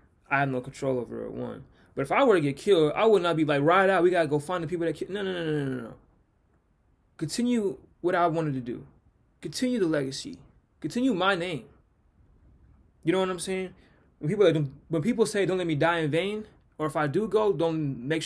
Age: 20-39